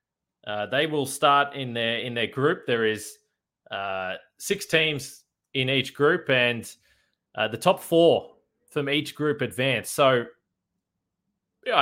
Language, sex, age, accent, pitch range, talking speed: English, male, 20-39, Australian, 120-145 Hz, 140 wpm